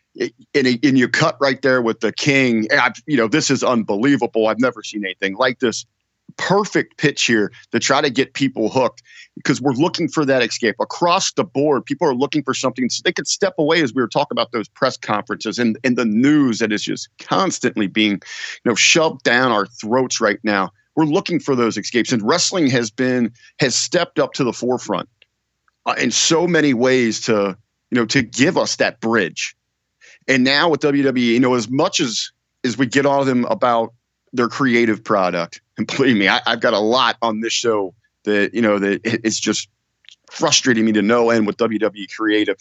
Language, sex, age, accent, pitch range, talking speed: English, male, 50-69, American, 110-140 Hz, 205 wpm